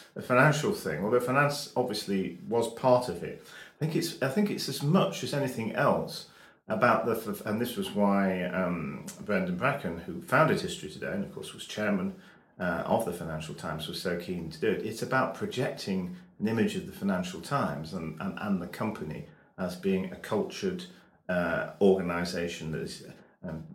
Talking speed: 185 wpm